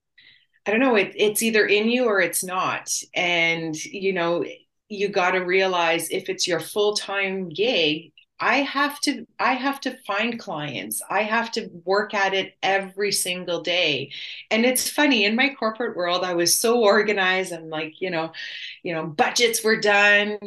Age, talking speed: 30-49, 180 wpm